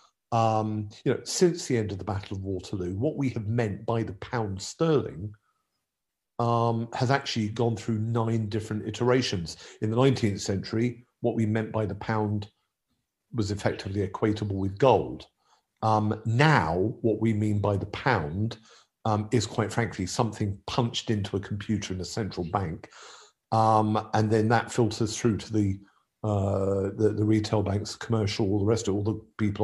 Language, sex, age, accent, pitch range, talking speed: English, male, 50-69, British, 100-115 Hz, 170 wpm